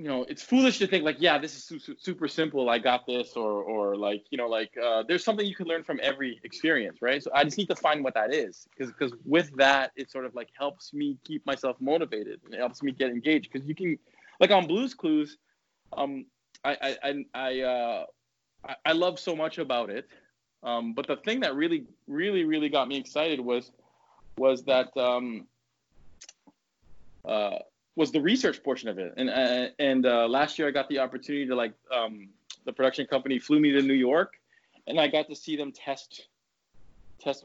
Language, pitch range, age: English, 130-160 Hz, 20-39